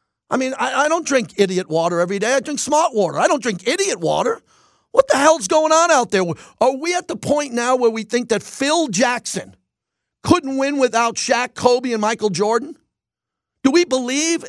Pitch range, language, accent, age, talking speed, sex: 230-285 Hz, English, American, 50-69, 205 wpm, male